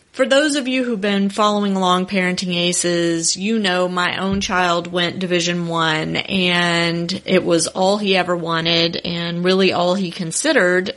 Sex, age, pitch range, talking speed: female, 30-49, 170-205 Hz, 165 wpm